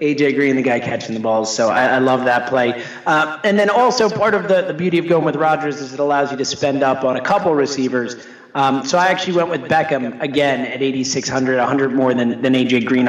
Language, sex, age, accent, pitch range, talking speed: English, male, 30-49, American, 125-155 Hz, 245 wpm